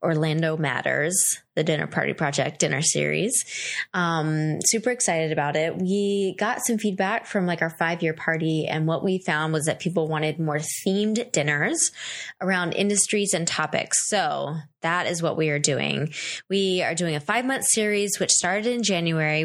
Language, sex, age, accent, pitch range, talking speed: English, female, 20-39, American, 160-205 Hz, 165 wpm